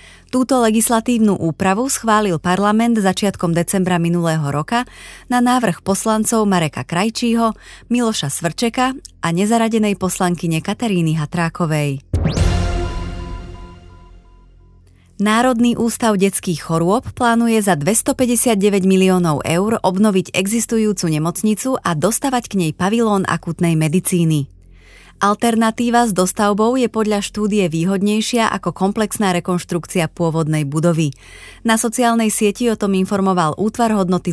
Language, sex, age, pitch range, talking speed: Slovak, female, 20-39, 165-220 Hz, 105 wpm